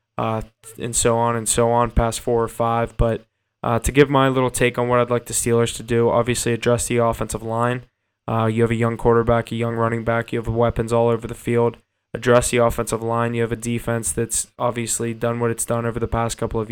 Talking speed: 240 wpm